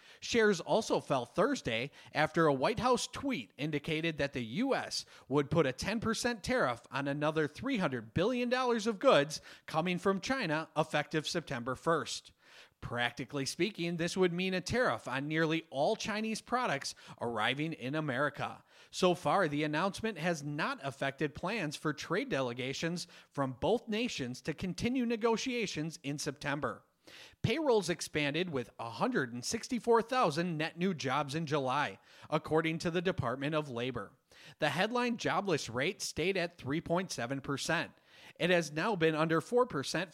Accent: American